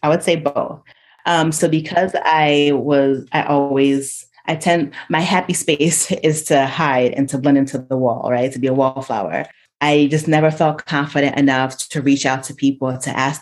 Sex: female